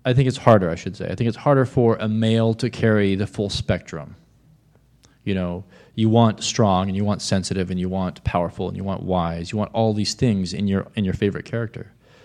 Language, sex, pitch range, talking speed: English, male, 95-115 Hz, 230 wpm